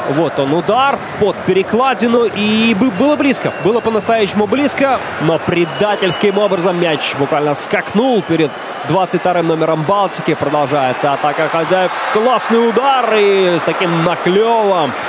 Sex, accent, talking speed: male, native, 120 wpm